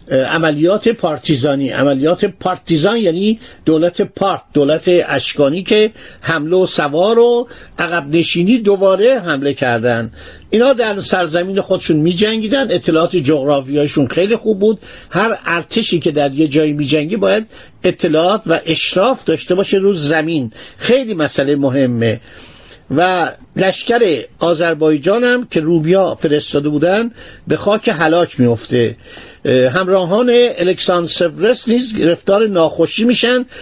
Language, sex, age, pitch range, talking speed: Persian, male, 50-69, 155-220 Hz, 110 wpm